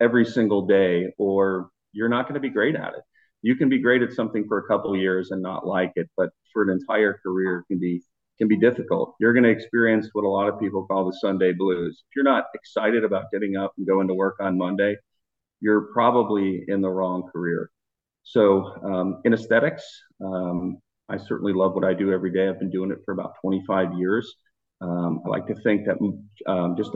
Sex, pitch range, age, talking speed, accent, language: male, 95-115 Hz, 40-59, 210 wpm, American, English